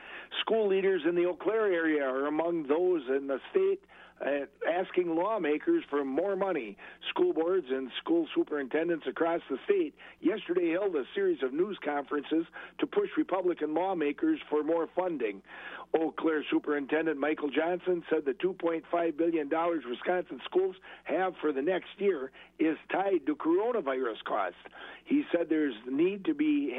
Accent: American